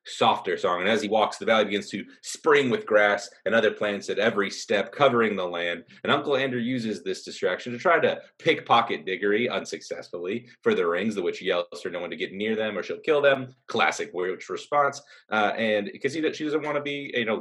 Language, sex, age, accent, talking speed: English, male, 30-49, American, 220 wpm